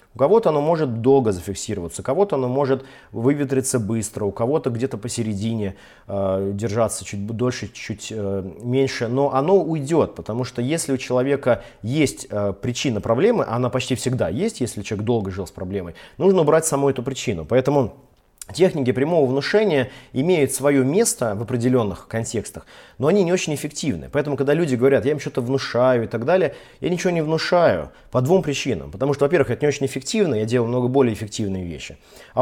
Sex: male